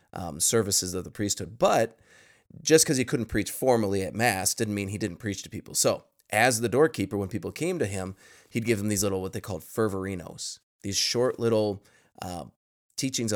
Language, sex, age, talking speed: English, male, 20-39, 200 wpm